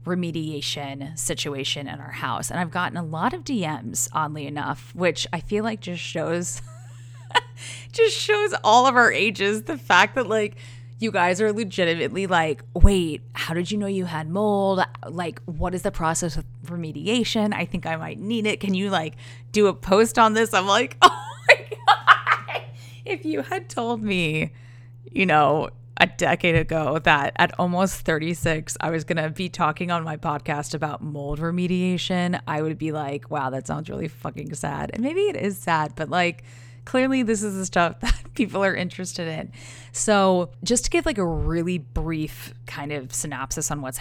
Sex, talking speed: female, 185 wpm